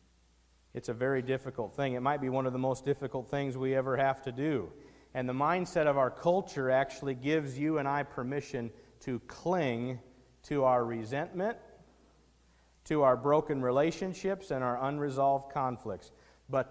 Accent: American